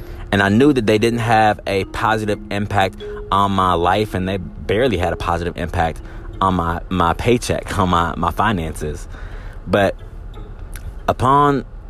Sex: male